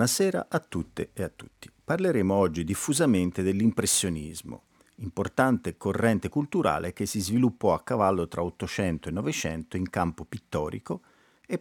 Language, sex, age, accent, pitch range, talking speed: Italian, male, 50-69, native, 90-125 Hz, 135 wpm